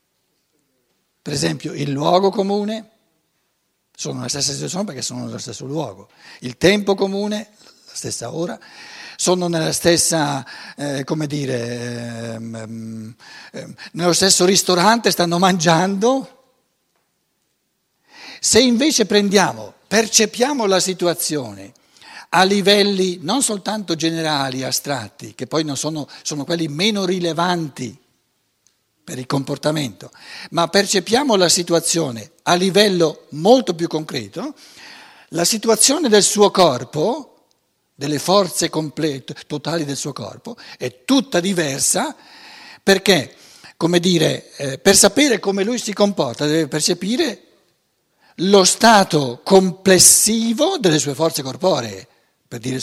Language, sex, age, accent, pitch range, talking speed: Italian, male, 60-79, native, 140-205 Hz, 115 wpm